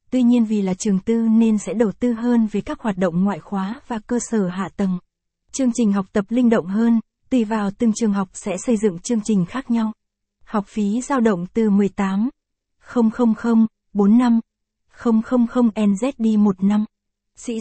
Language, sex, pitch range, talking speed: Vietnamese, female, 205-235 Hz, 170 wpm